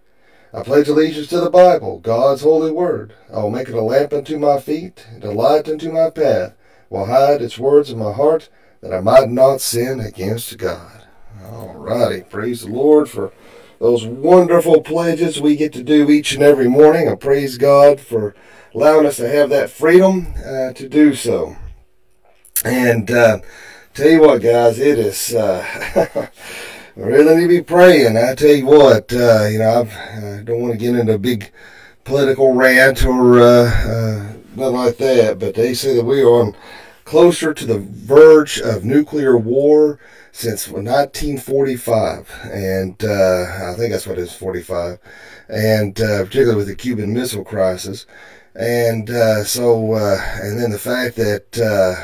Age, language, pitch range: 40-59, English, 110-145 Hz